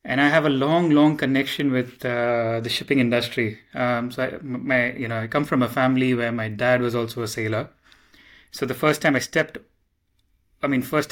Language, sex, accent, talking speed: English, male, Indian, 210 wpm